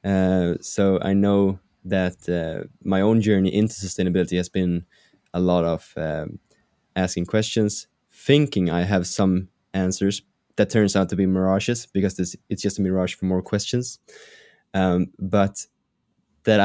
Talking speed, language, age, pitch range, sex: 150 wpm, English, 20-39, 90-100 Hz, male